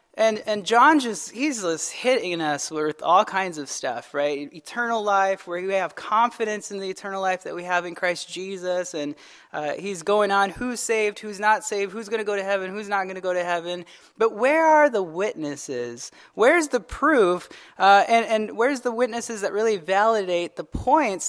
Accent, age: American, 20-39